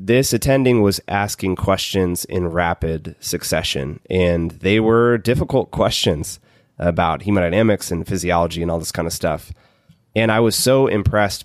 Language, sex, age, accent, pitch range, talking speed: English, male, 20-39, American, 90-110 Hz, 145 wpm